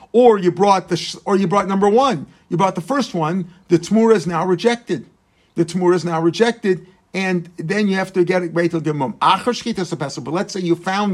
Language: English